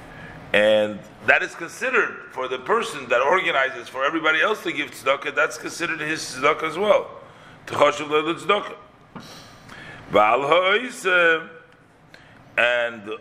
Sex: male